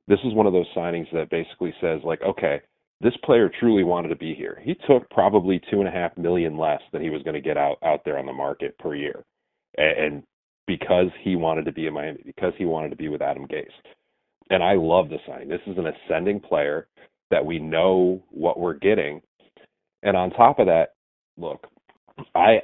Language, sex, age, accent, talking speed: English, male, 40-59, American, 210 wpm